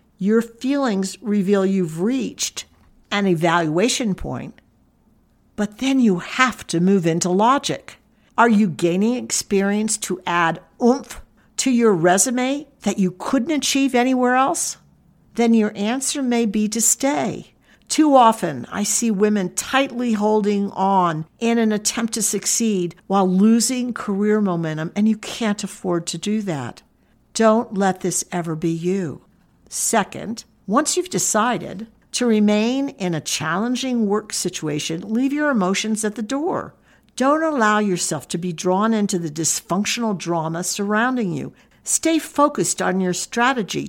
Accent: American